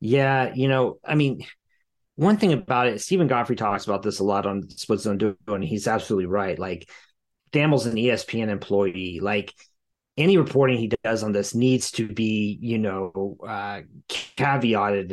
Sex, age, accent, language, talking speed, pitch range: male, 30-49, American, English, 170 wpm, 105-125 Hz